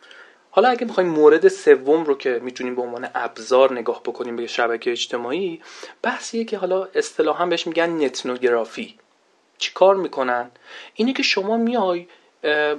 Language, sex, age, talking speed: Persian, male, 40-59, 140 wpm